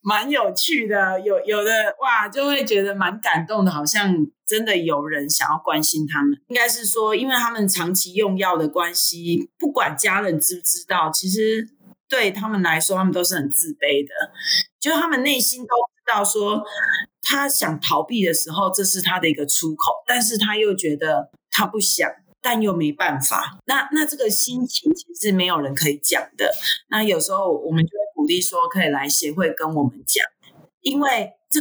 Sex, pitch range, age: female, 165-240 Hz, 30-49